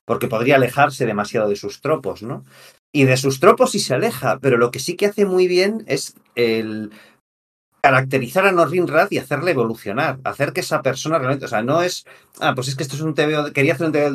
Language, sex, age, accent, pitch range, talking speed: Spanish, male, 40-59, Spanish, 115-150 Hz, 230 wpm